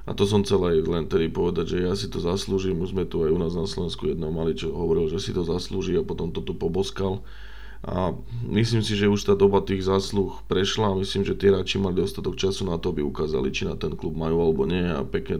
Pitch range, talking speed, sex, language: 90-100 Hz, 245 wpm, male, Slovak